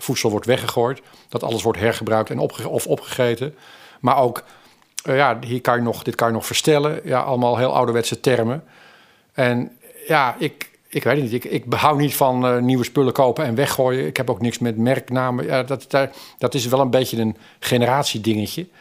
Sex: male